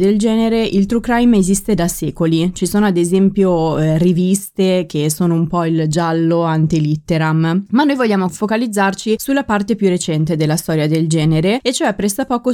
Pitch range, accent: 165-210 Hz, native